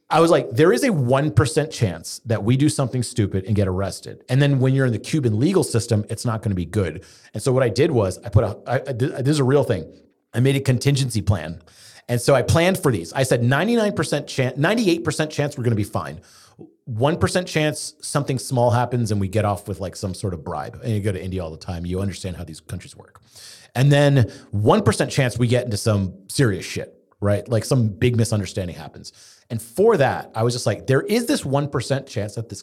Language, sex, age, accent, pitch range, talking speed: English, male, 30-49, American, 100-135 Hz, 235 wpm